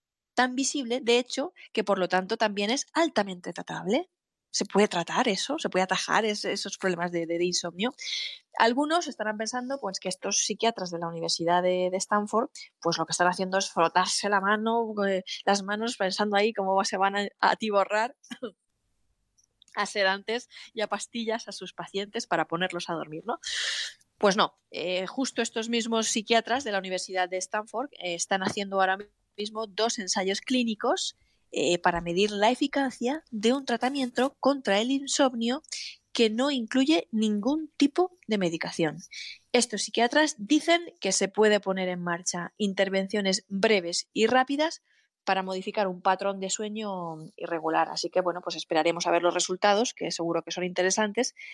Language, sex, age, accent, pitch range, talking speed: Spanish, female, 20-39, Spanish, 185-235 Hz, 165 wpm